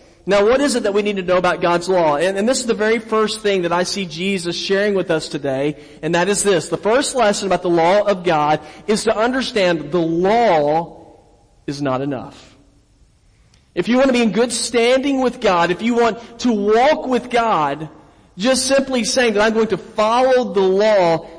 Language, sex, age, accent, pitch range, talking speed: English, male, 40-59, American, 180-225 Hz, 210 wpm